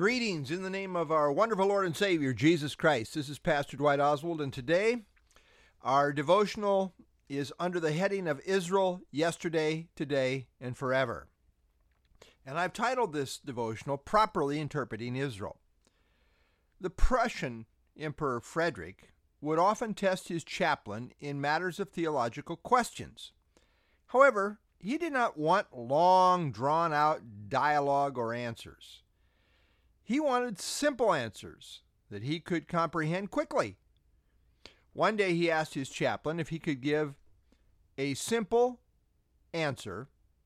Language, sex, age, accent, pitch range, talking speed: English, male, 50-69, American, 135-195 Hz, 125 wpm